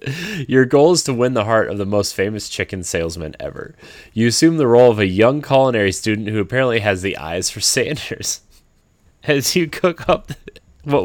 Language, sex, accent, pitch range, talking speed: English, male, American, 95-130 Hz, 190 wpm